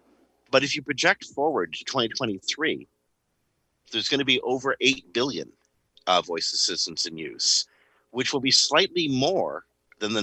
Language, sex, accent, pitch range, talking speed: English, male, American, 85-130 Hz, 155 wpm